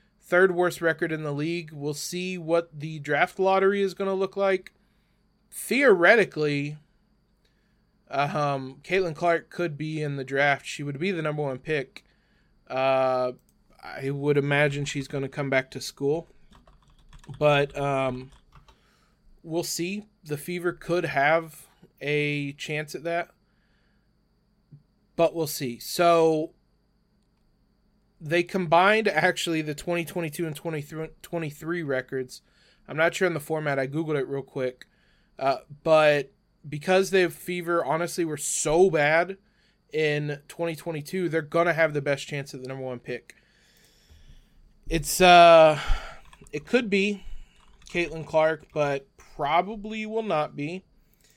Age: 20-39